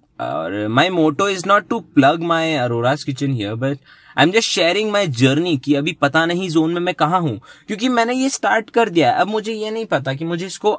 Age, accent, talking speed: 20-39, native, 235 wpm